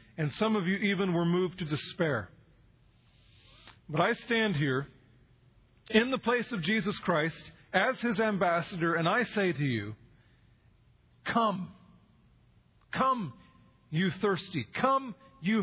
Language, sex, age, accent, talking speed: English, male, 40-59, American, 125 wpm